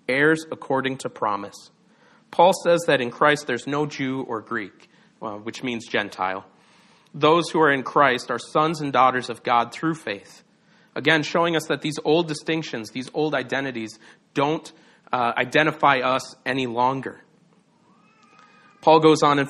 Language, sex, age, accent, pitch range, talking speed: English, male, 40-59, American, 120-155 Hz, 155 wpm